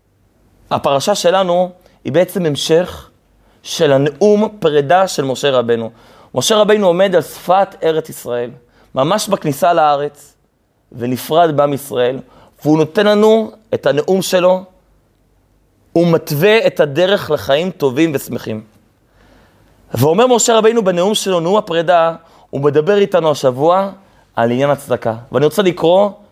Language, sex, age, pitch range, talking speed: Hebrew, male, 30-49, 135-200 Hz, 120 wpm